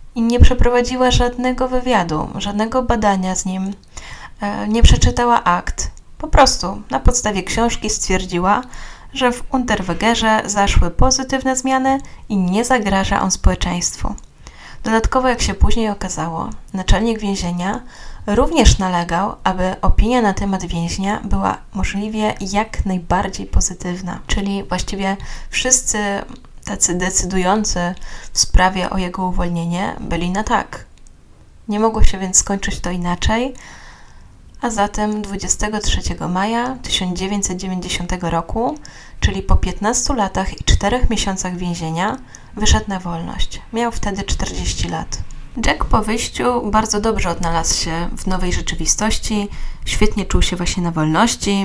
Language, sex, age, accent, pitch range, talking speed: Polish, female, 10-29, native, 180-220 Hz, 120 wpm